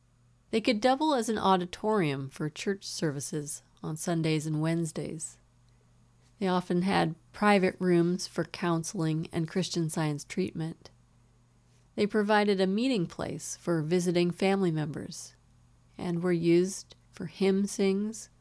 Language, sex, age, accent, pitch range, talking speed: English, female, 30-49, American, 155-195 Hz, 125 wpm